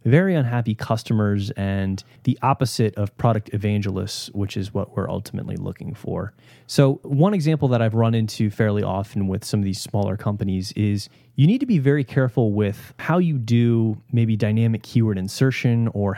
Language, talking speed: English, 175 wpm